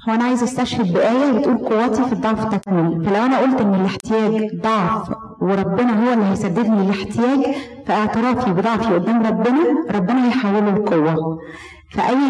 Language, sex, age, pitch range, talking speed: Arabic, female, 30-49, 205-260 Hz, 145 wpm